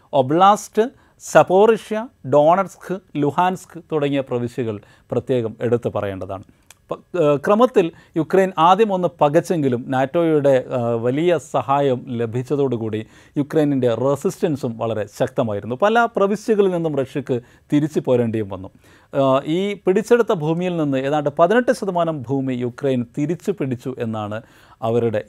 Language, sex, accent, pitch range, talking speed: Malayalam, male, native, 125-180 Hz, 95 wpm